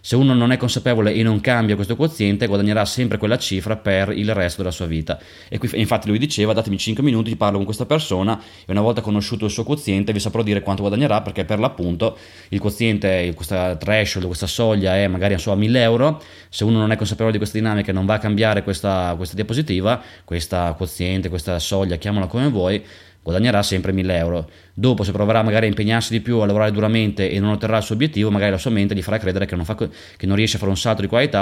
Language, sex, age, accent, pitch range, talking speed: Italian, male, 20-39, native, 95-110 Hz, 230 wpm